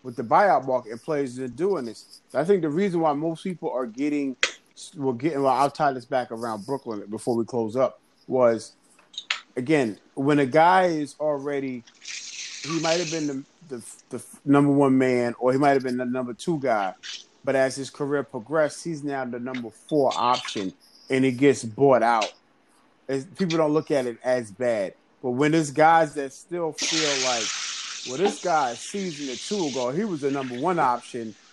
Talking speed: 200 wpm